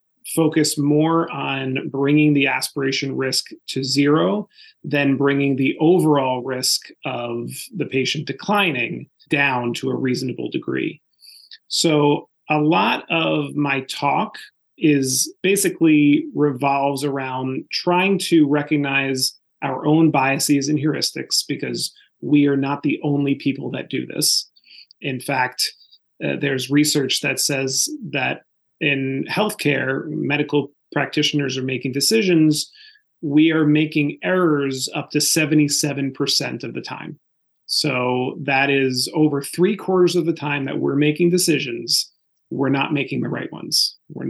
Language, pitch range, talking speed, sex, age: English, 135-155 Hz, 130 wpm, male, 30-49